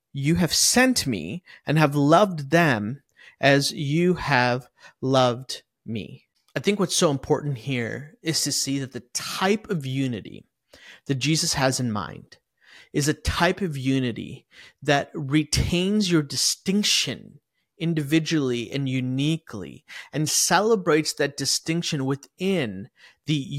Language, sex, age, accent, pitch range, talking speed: English, male, 30-49, American, 140-175 Hz, 125 wpm